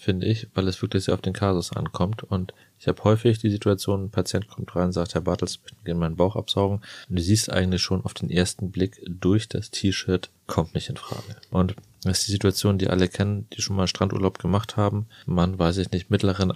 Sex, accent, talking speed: male, German, 230 wpm